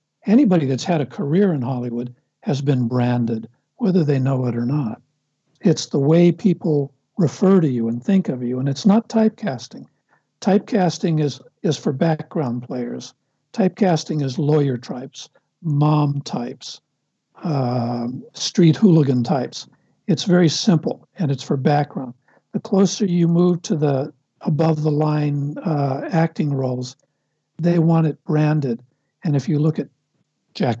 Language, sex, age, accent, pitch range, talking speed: English, male, 60-79, American, 140-175 Hz, 145 wpm